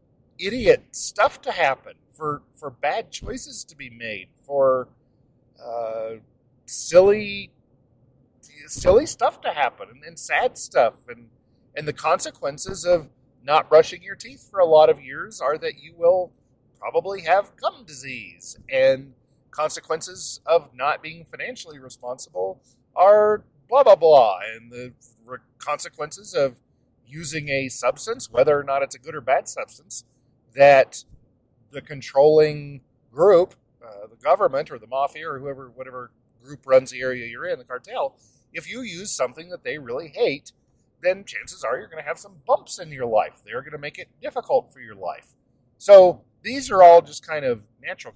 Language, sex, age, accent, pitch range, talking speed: English, male, 40-59, American, 125-175 Hz, 160 wpm